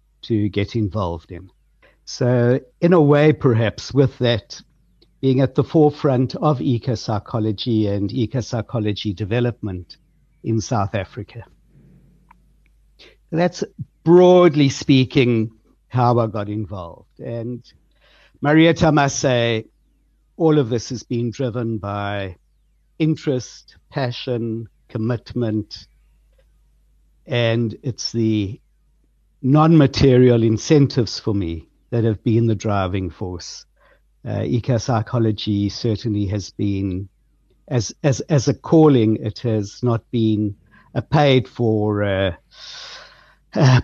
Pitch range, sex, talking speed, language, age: 105-135 Hz, male, 105 wpm, English, 60-79